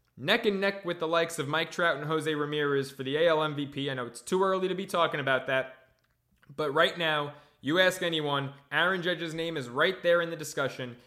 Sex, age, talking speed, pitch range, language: male, 20-39, 220 wpm, 140-185 Hz, English